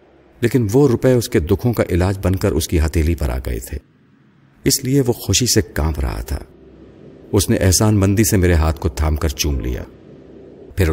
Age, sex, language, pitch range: 50-69, male, Urdu, 75-105 Hz